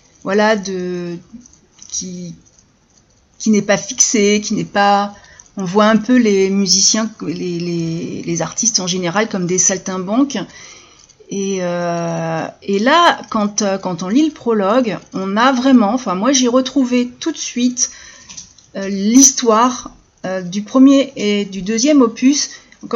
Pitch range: 200-260 Hz